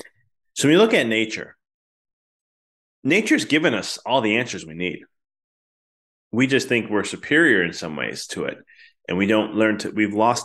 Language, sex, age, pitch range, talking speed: English, male, 20-39, 105-125 Hz, 180 wpm